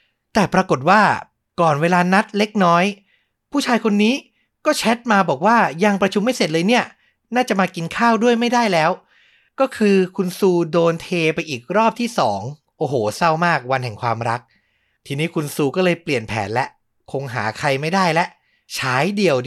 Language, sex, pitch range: Thai, male, 135-195 Hz